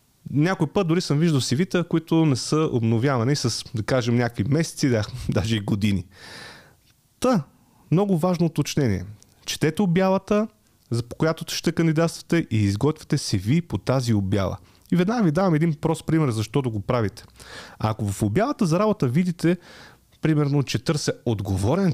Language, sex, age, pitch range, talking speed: Bulgarian, male, 30-49, 110-165 Hz, 160 wpm